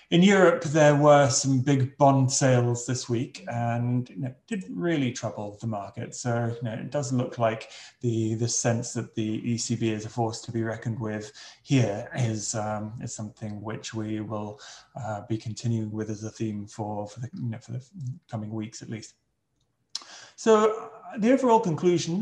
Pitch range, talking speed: 110-140 Hz, 185 wpm